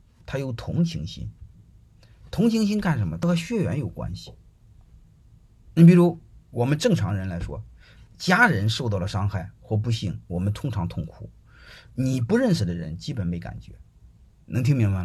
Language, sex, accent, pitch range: Chinese, male, native, 100-140 Hz